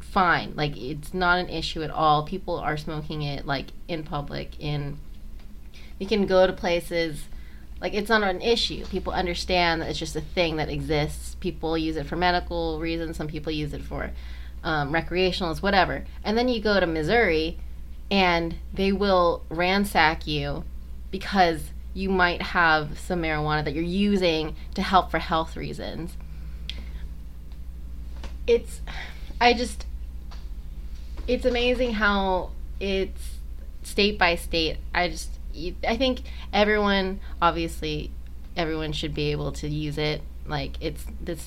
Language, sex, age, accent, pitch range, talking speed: English, female, 20-39, American, 140-180 Hz, 145 wpm